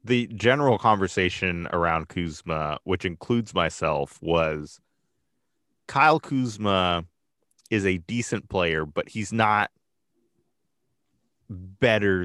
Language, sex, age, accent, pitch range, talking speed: English, male, 20-39, American, 85-105 Hz, 95 wpm